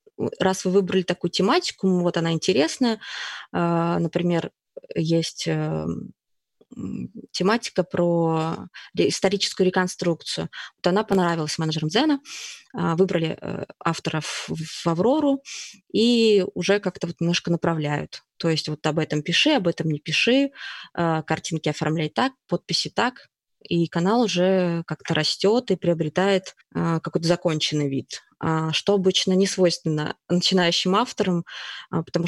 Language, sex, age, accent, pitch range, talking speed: Russian, female, 20-39, native, 170-210 Hz, 115 wpm